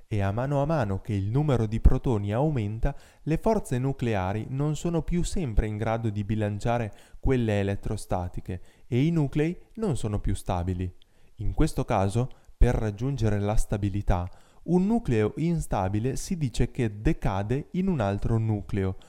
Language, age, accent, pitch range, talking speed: Italian, 20-39, native, 105-140 Hz, 155 wpm